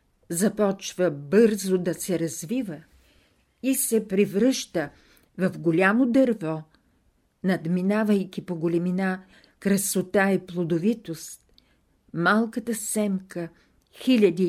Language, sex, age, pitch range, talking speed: Bulgarian, female, 50-69, 170-215 Hz, 85 wpm